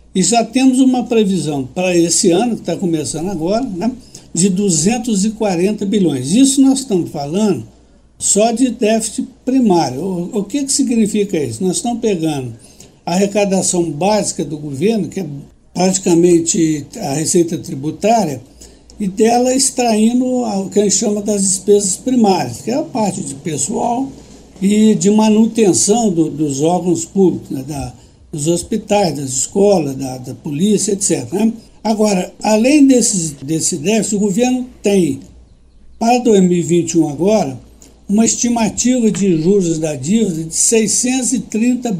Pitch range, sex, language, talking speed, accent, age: 170-230 Hz, male, Portuguese, 140 wpm, Brazilian, 60-79